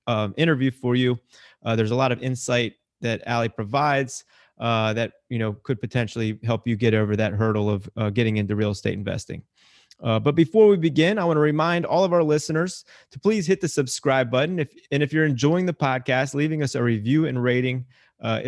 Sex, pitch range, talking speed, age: male, 120-150 Hz, 210 wpm, 30-49